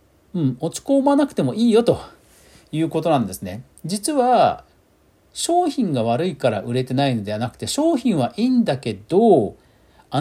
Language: Japanese